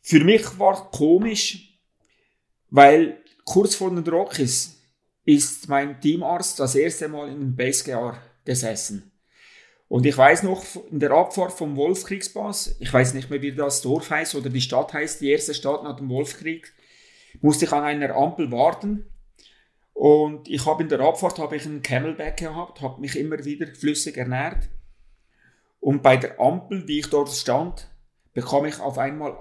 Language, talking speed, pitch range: German, 165 wpm, 130-165 Hz